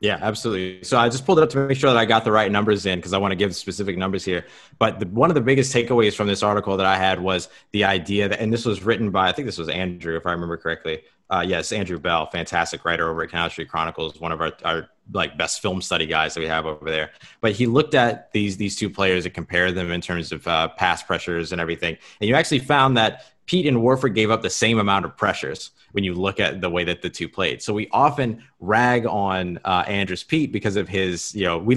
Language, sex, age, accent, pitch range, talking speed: English, male, 30-49, American, 90-110 Hz, 265 wpm